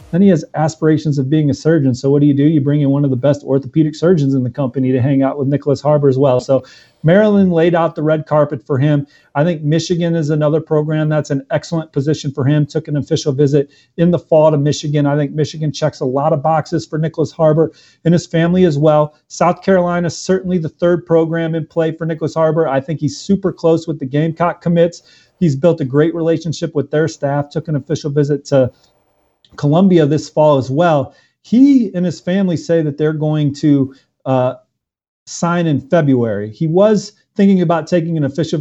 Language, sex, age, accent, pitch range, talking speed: English, male, 40-59, American, 140-165 Hz, 215 wpm